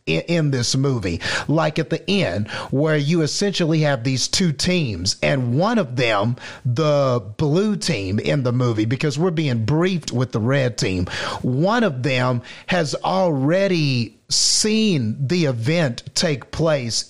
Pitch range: 130-165 Hz